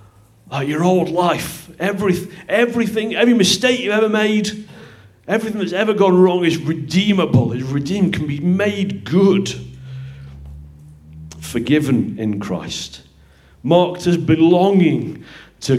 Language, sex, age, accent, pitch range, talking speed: English, male, 40-59, British, 145-200 Hz, 115 wpm